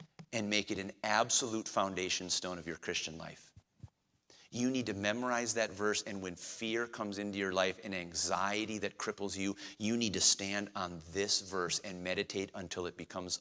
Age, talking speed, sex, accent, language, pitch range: 30-49, 185 wpm, male, American, English, 100-145 Hz